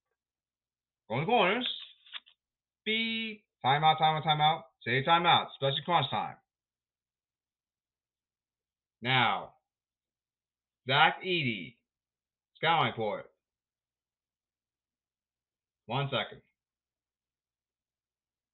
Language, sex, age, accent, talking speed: English, male, 30-49, American, 70 wpm